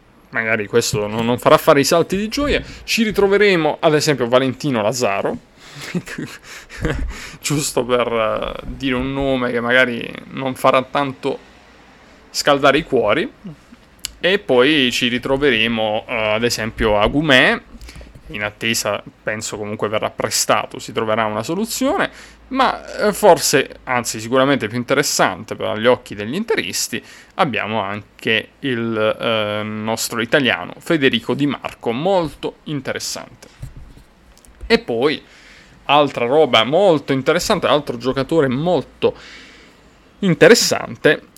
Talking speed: 110 wpm